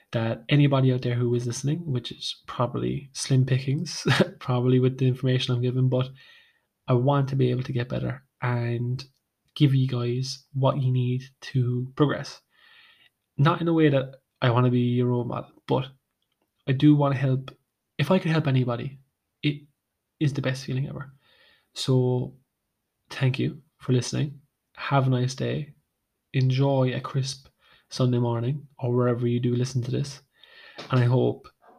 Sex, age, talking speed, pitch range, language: male, 20-39, 170 wpm, 125-140 Hz, English